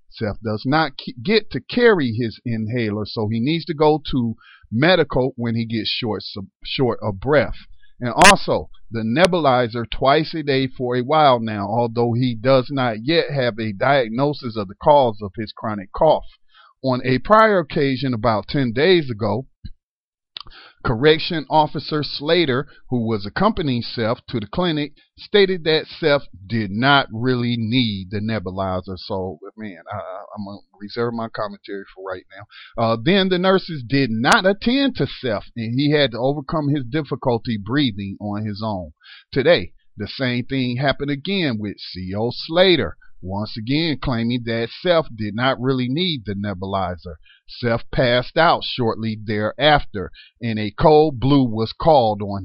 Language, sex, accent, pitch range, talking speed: English, male, American, 110-155 Hz, 155 wpm